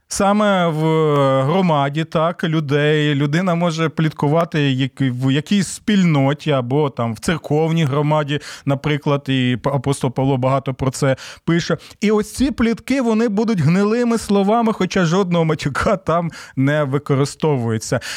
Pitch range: 145-190 Hz